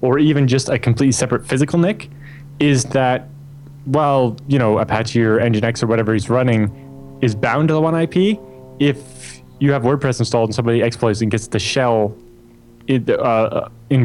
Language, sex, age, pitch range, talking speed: English, male, 20-39, 110-130 Hz, 175 wpm